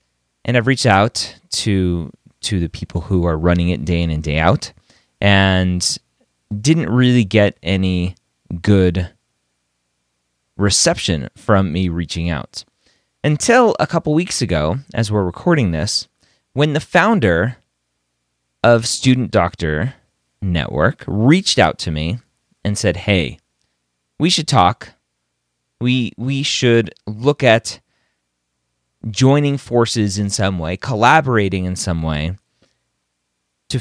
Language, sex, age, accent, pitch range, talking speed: English, male, 30-49, American, 75-125 Hz, 120 wpm